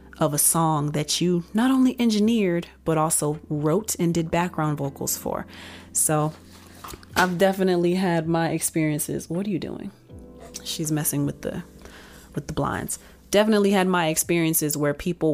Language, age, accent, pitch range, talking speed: English, 30-49, American, 150-180 Hz, 155 wpm